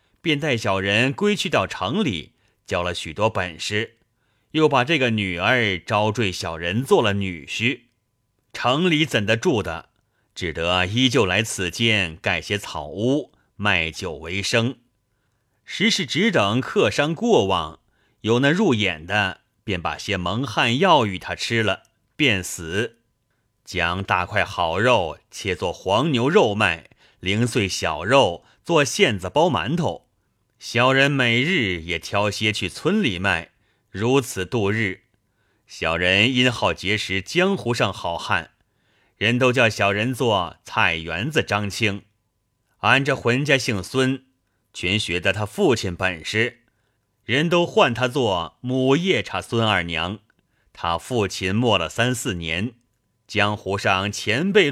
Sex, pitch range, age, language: male, 100-125 Hz, 30-49, Chinese